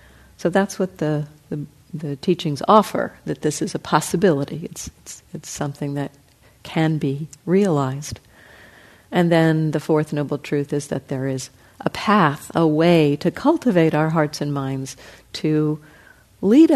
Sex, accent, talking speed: female, American, 155 wpm